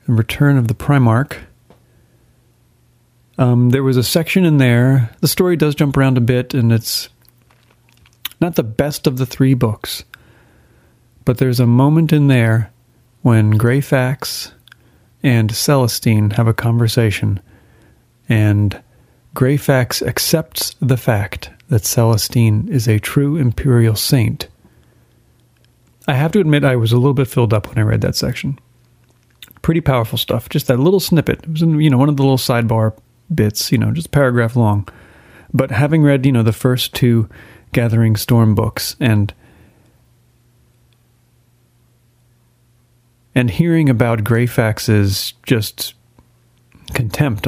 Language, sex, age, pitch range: English, male, 40-59, 110-130 Hz